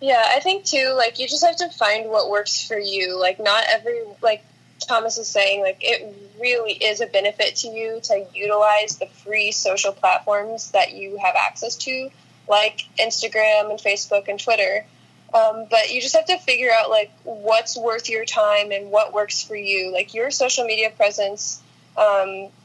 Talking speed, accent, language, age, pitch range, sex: 185 wpm, American, English, 10-29, 210-260 Hz, female